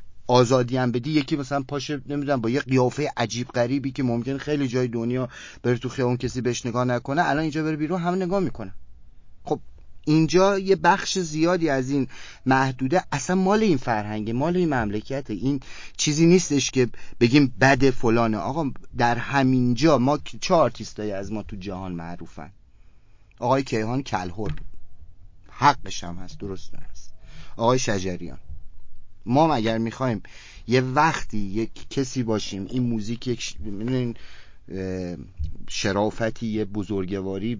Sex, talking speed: male, 135 wpm